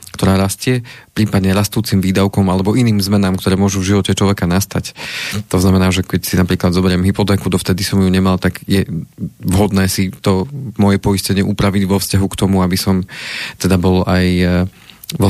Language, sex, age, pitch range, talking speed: Slovak, male, 30-49, 95-105 Hz, 175 wpm